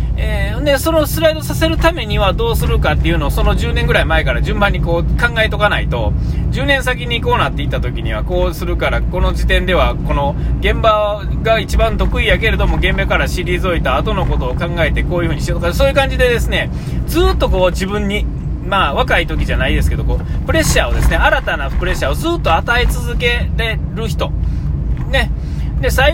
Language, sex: Japanese, male